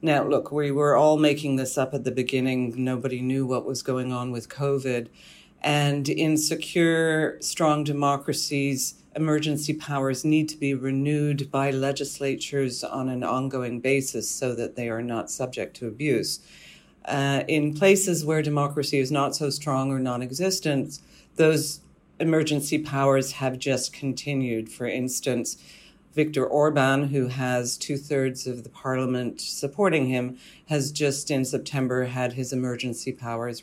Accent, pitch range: American, 130-150 Hz